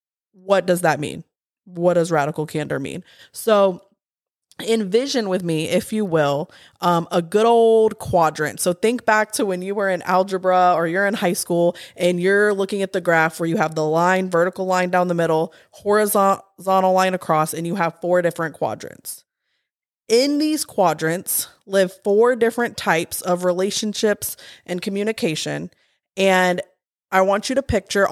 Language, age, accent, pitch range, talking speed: English, 20-39, American, 170-210 Hz, 165 wpm